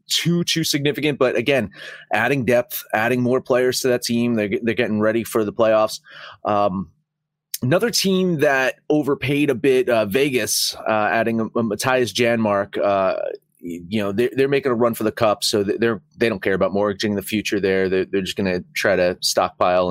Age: 30-49